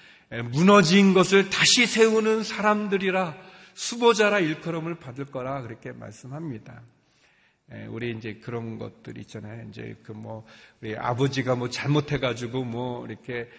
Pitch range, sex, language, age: 130-200 Hz, male, Korean, 40-59